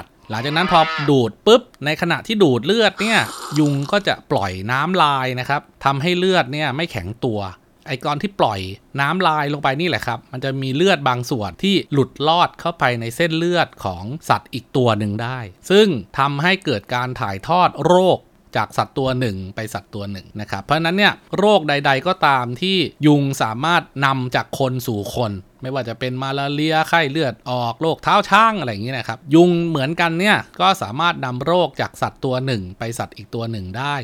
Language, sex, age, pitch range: Thai, male, 20-39, 120-170 Hz